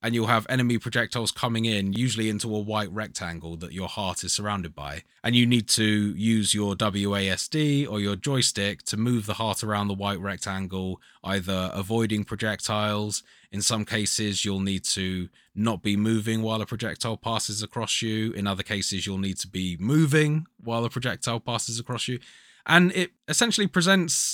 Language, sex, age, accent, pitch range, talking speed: English, male, 20-39, British, 100-125 Hz, 180 wpm